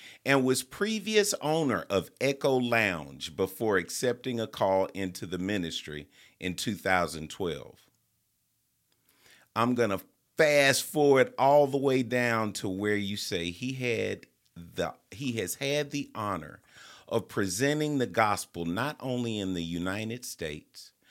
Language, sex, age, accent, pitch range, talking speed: English, male, 40-59, American, 95-140 Hz, 135 wpm